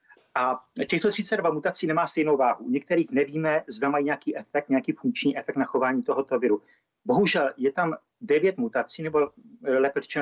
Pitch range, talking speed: 135-170 Hz, 165 wpm